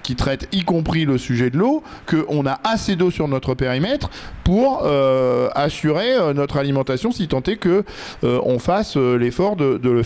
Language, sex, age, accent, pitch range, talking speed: French, male, 50-69, French, 145-190 Hz, 180 wpm